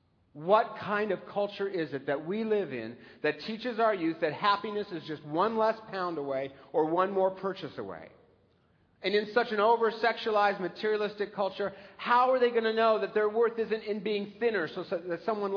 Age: 50-69